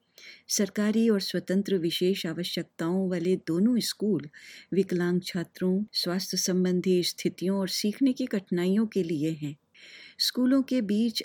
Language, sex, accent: Hindi, female, native